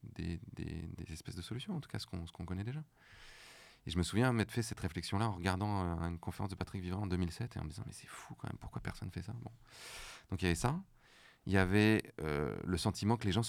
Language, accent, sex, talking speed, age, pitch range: French, French, male, 275 wpm, 30-49, 80-105 Hz